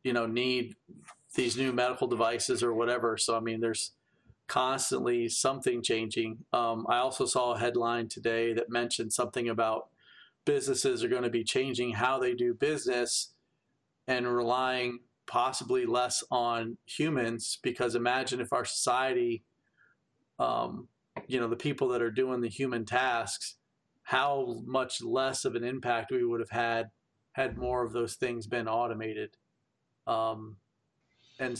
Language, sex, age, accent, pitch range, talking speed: English, male, 40-59, American, 115-135 Hz, 150 wpm